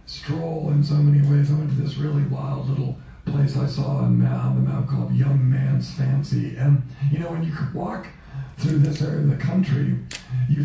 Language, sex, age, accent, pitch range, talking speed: English, male, 50-69, American, 135-150 Hz, 205 wpm